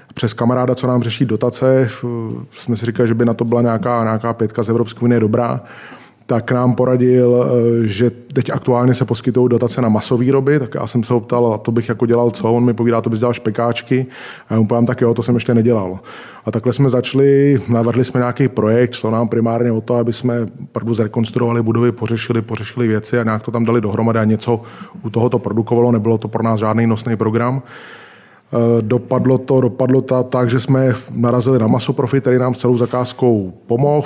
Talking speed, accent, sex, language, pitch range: 205 wpm, native, male, Czech, 115-125 Hz